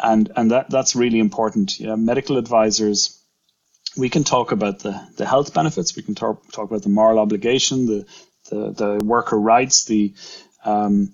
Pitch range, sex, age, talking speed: 105-115 Hz, male, 30-49, 180 wpm